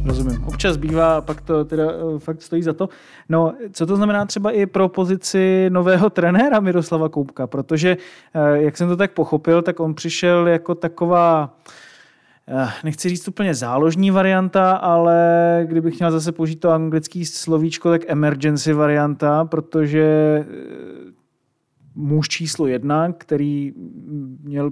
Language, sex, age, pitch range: Czech, male, 30-49, 150-165 Hz